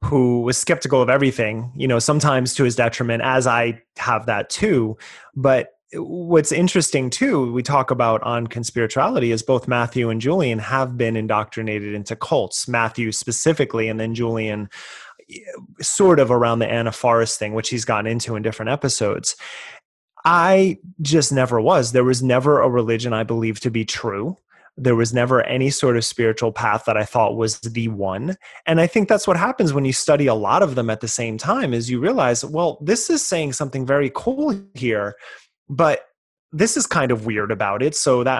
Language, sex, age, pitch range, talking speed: English, male, 30-49, 115-150 Hz, 190 wpm